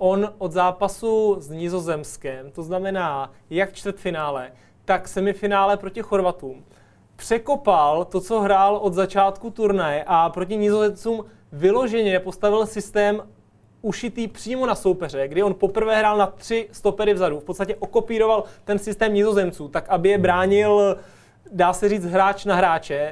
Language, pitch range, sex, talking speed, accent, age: Czech, 170-205 Hz, male, 140 wpm, native, 30-49